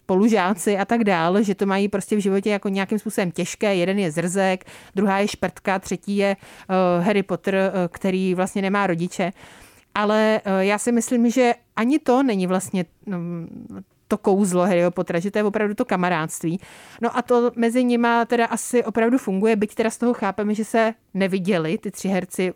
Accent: native